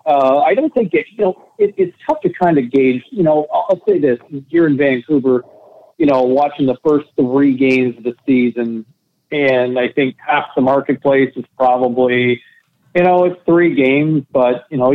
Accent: American